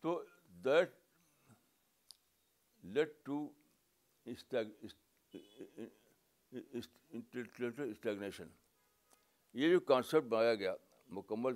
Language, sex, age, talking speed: Urdu, male, 60-79, 60 wpm